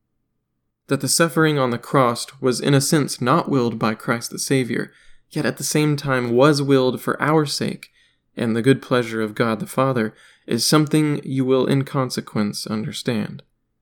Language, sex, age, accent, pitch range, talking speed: English, male, 20-39, American, 120-145 Hz, 180 wpm